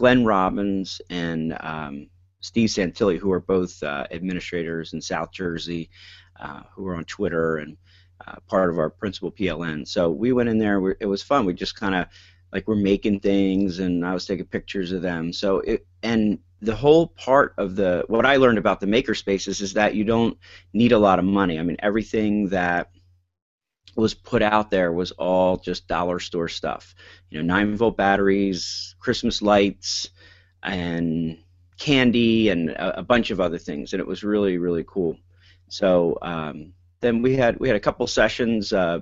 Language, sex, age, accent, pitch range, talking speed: English, male, 40-59, American, 90-100 Hz, 190 wpm